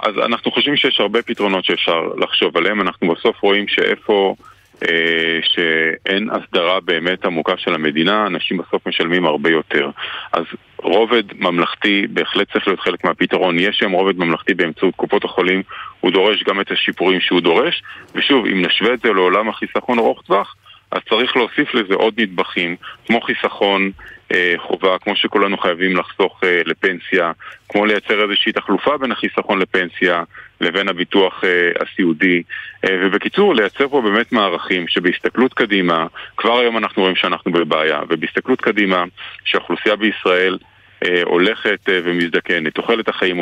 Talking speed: 140 wpm